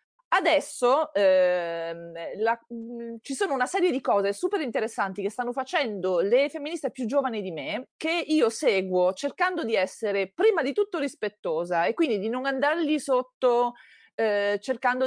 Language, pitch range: Italian, 190-270 Hz